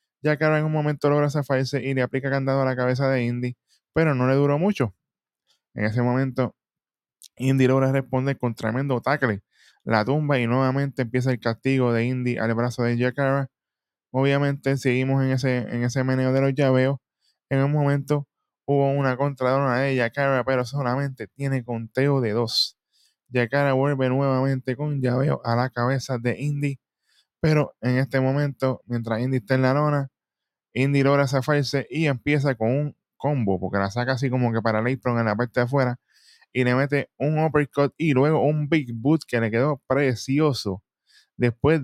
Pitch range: 125-145 Hz